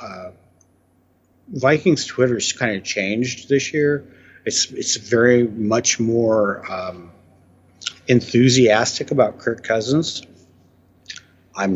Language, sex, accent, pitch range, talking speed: English, male, American, 90-125 Hz, 95 wpm